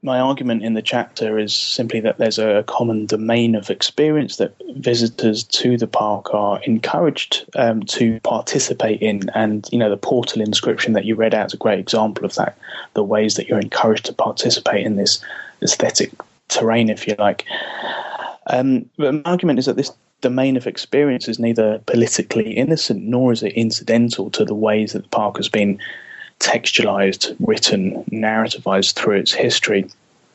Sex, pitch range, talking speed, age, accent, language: male, 105-120 Hz, 170 wpm, 20-39, British, English